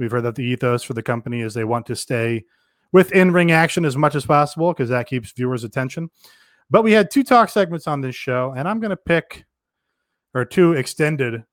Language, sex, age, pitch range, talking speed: English, male, 30-49, 125-165 Hz, 220 wpm